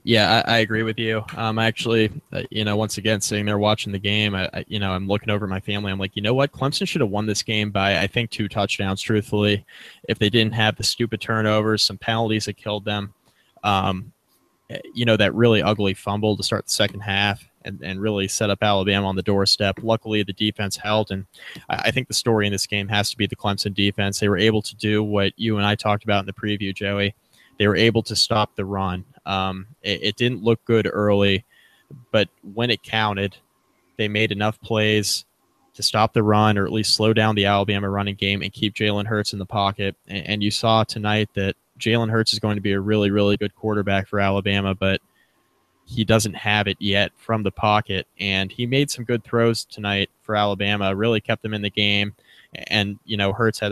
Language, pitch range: English, 100-110 Hz